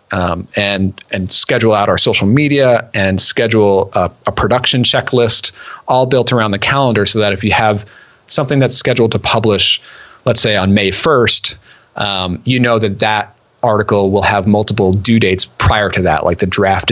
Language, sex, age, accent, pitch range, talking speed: English, male, 30-49, American, 95-115 Hz, 180 wpm